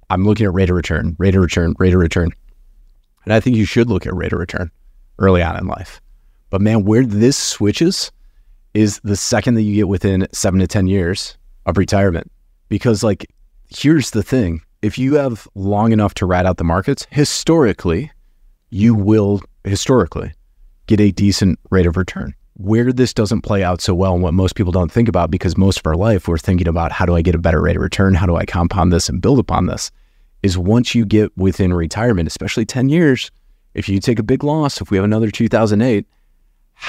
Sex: male